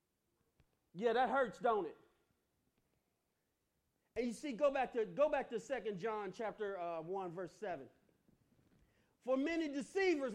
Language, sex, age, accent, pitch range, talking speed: English, male, 40-59, American, 230-335 Hz, 140 wpm